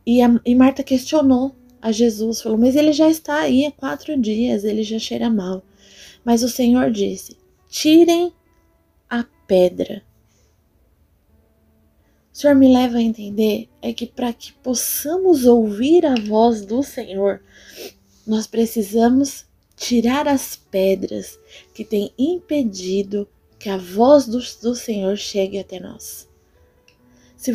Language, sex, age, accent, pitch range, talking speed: Portuguese, female, 20-39, Brazilian, 210-285 Hz, 130 wpm